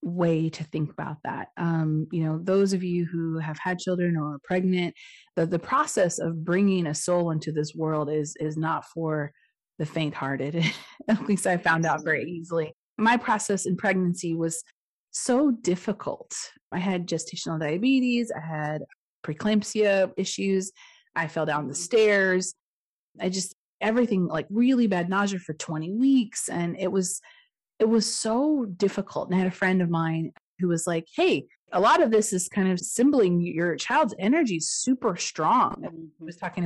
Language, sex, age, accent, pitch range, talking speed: English, female, 30-49, American, 165-220 Hz, 175 wpm